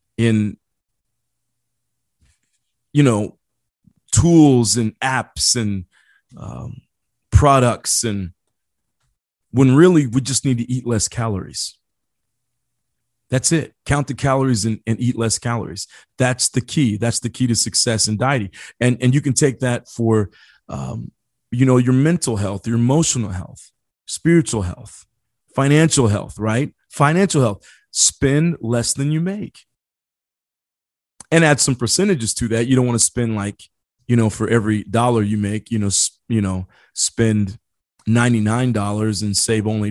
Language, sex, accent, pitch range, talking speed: English, male, American, 110-130 Hz, 145 wpm